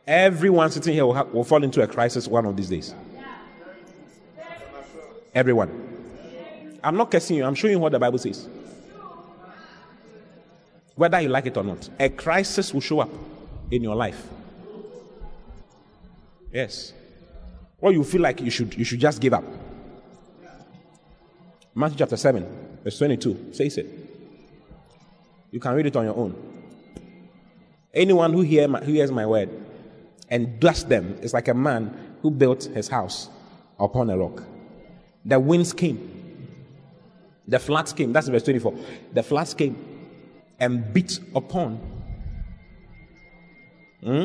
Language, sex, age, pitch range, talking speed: English, male, 30-49, 120-170 Hz, 135 wpm